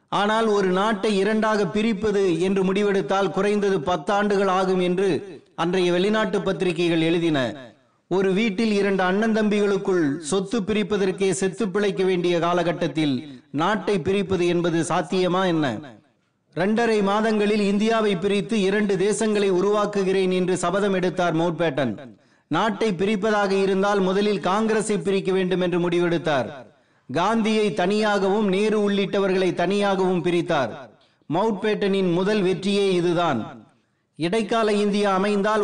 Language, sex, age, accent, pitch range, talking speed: Tamil, male, 30-49, native, 180-205 Hz, 110 wpm